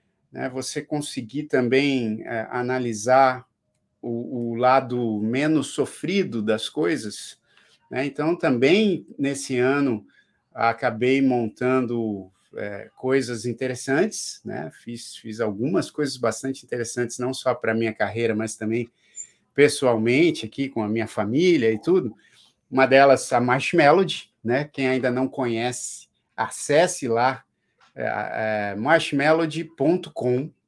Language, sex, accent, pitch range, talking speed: Portuguese, male, Brazilian, 115-140 Hz, 115 wpm